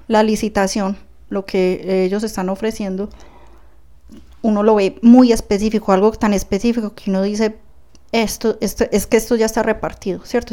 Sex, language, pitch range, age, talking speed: female, Spanish, 200-240 Hz, 10-29, 155 wpm